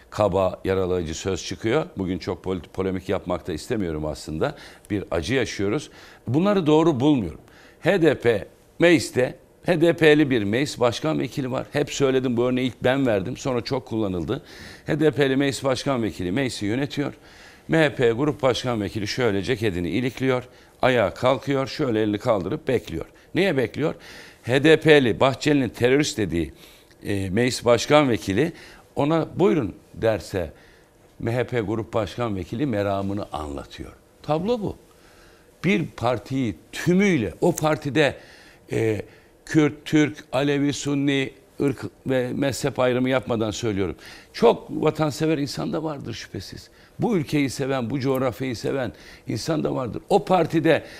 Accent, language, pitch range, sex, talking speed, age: native, Turkish, 110-150 Hz, male, 125 wpm, 60-79